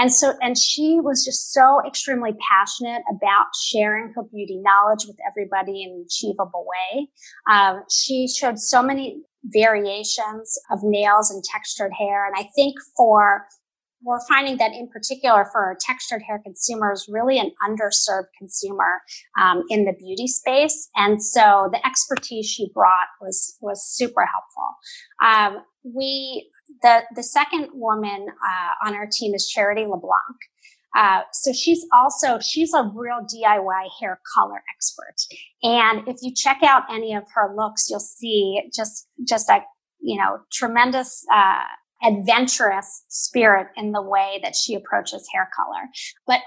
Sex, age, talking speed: female, 30-49, 150 wpm